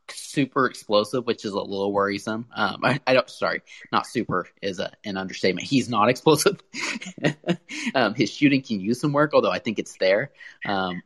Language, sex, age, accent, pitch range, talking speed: English, male, 30-49, American, 100-130 Hz, 185 wpm